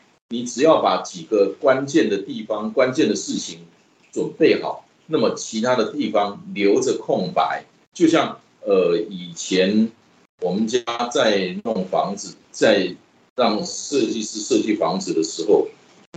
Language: Chinese